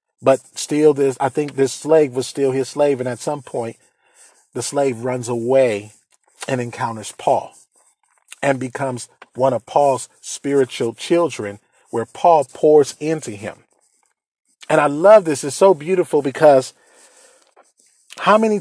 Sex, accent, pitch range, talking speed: male, American, 130-170 Hz, 140 wpm